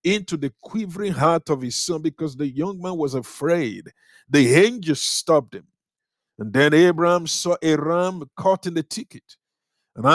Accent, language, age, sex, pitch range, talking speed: Nigerian, English, 50-69, male, 135-175 Hz, 165 wpm